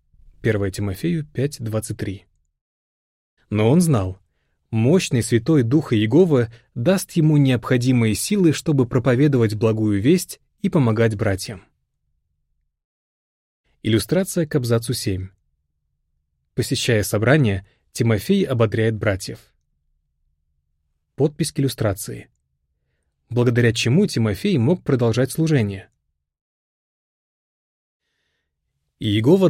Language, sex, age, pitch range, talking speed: Russian, male, 30-49, 95-150 Hz, 85 wpm